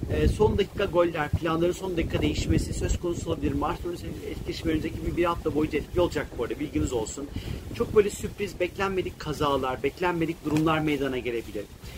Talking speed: 160 wpm